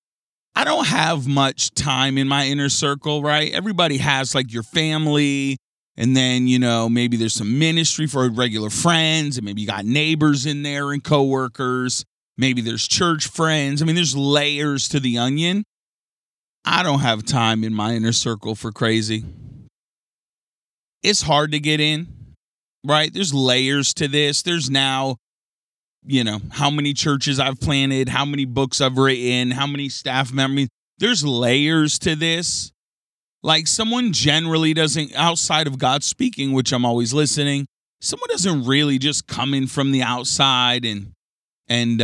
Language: English